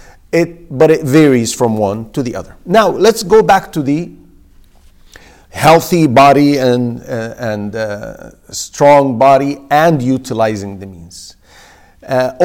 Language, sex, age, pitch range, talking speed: English, male, 50-69, 125-175 Hz, 135 wpm